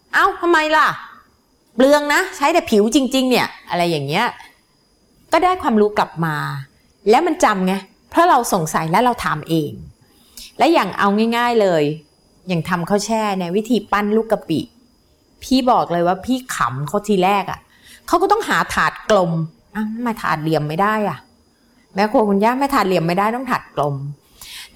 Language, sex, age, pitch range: Thai, female, 30-49, 175-245 Hz